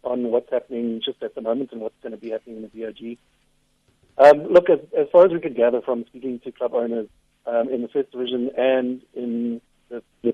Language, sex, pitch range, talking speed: English, male, 120-140 Hz, 225 wpm